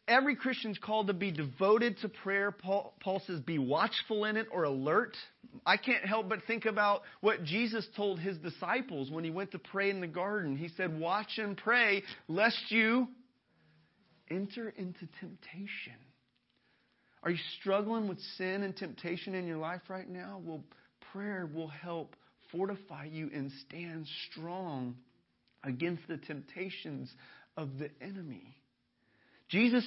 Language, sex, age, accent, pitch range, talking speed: English, male, 40-59, American, 170-260 Hz, 150 wpm